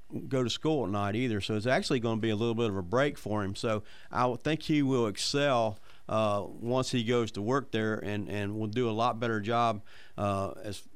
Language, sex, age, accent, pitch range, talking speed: English, male, 40-59, American, 115-135 Hz, 230 wpm